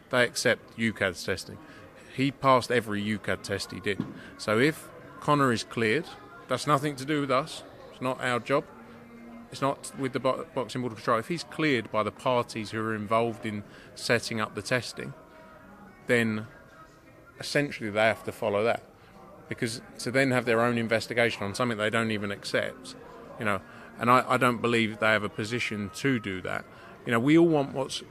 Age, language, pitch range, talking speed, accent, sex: 30-49, English, 115-140 Hz, 185 wpm, British, male